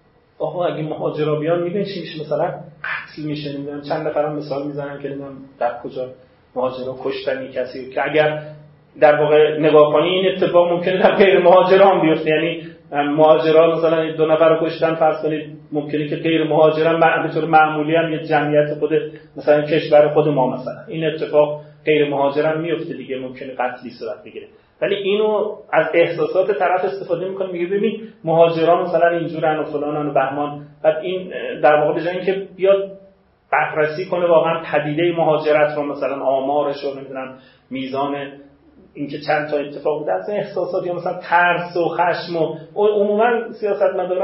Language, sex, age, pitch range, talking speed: Persian, male, 30-49, 150-175 Hz, 165 wpm